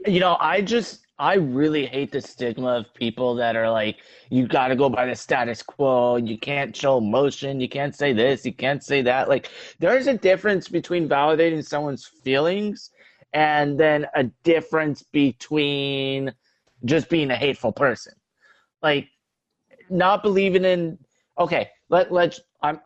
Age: 30-49